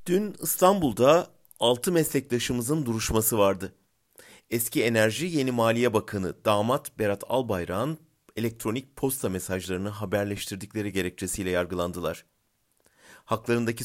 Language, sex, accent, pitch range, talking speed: German, male, Turkish, 100-130 Hz, 90 wpm